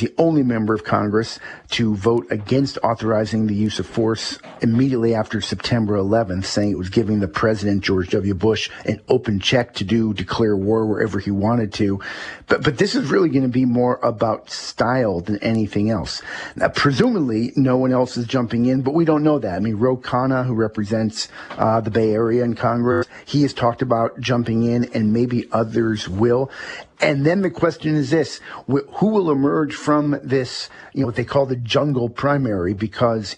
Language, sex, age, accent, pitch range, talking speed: English, male, 50-69, American, 105-125 Hz, 195 wpm